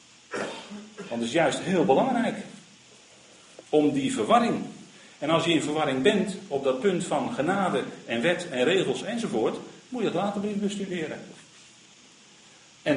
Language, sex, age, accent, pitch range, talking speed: Dutch, male, 50-69, Dutch, 160-225 Hz, 145 wpm